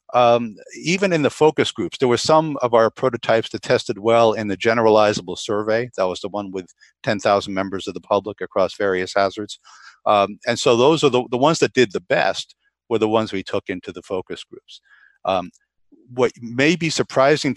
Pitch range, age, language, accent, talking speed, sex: 100-120 Hz, 50-69, English, American, 200 wpm, male